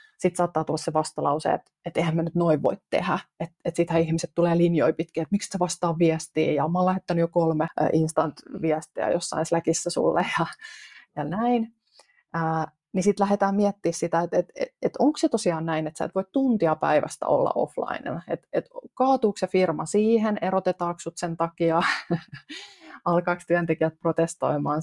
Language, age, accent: Finnish, 30-49, native